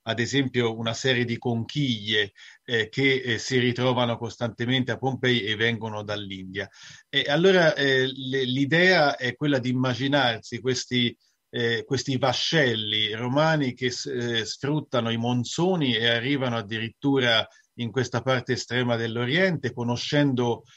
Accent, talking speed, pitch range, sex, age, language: native, 125 wpm, 110-130 Hz, male, 40-59, Italian